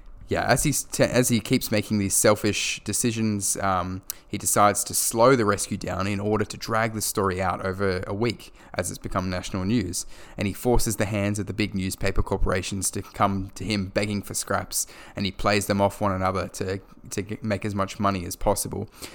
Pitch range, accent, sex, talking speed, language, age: 95-110 Hz, Australian, male, 205 wpm, English, 10-29